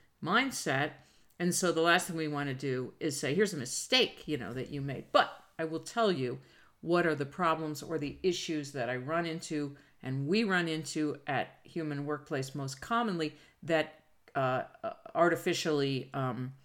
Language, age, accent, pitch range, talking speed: English, 50-69, American, 140-170 Hz, 175 wpm